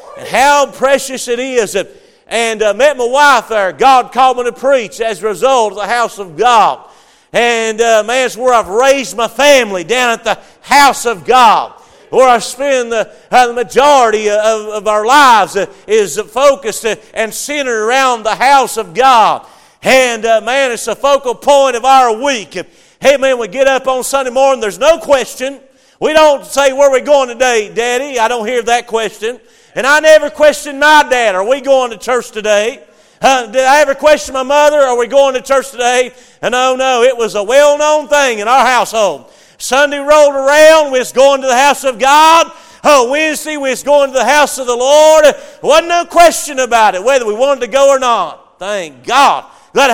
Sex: male